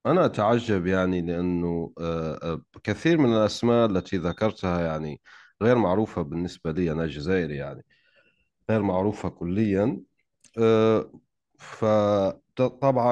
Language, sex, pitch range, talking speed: Arabic, male, 85-120 Hz, 95 wpm